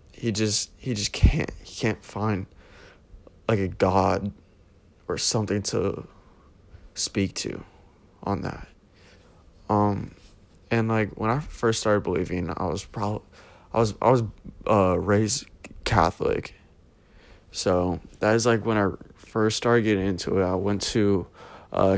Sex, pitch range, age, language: male, 95-110 Hz, 20-39, English